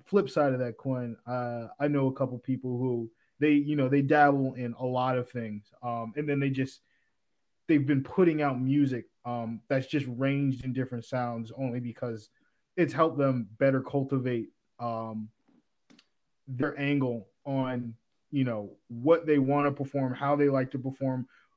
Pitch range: 125-145 Hz